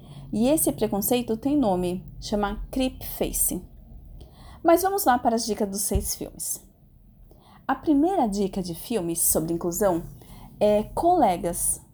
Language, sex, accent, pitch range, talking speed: Portuguese, female, Brazilian, 200-255 Hz, 130 wpm